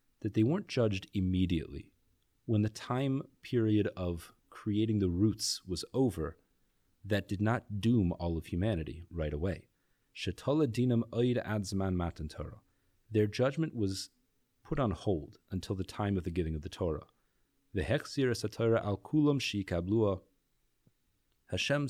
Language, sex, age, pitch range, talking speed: English, male, 30-49, 90-115 Hz, 110 wpm